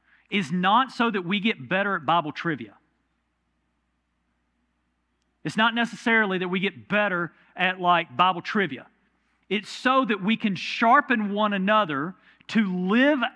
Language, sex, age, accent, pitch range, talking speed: English, male, 40-59, American, 150-245 Hz, 140 wpm